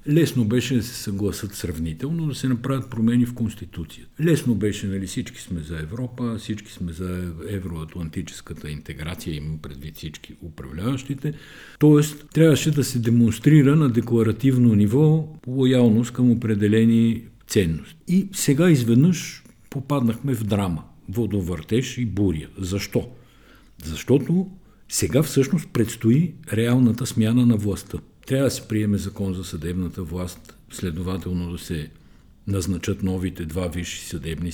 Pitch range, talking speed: 95-125 Hz, 130 wpm